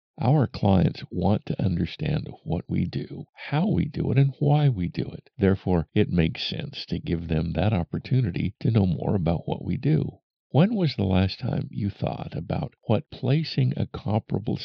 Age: 50-69